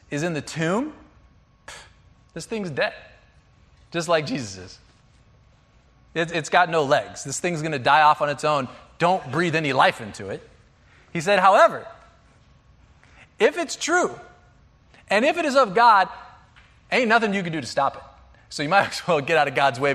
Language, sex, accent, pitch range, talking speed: English, male, American, 140-225 Hz, 180 wpm